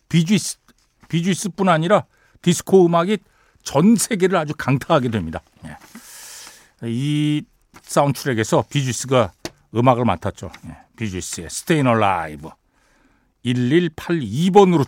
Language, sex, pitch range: Korean, male, 110-165 Hz